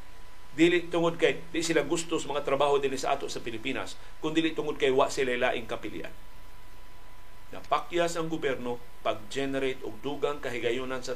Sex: male